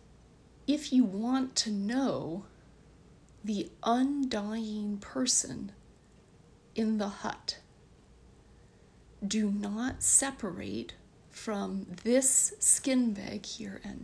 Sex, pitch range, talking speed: female, 195-250 Hz, 85 wpm